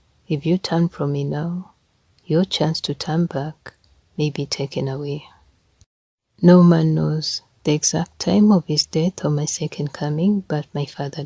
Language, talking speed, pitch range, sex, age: English, 165 wpm, 140-175 Hz, female, 30-49